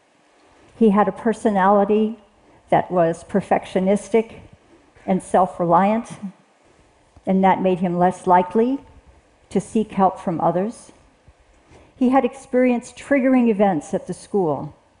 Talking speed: 110 wpm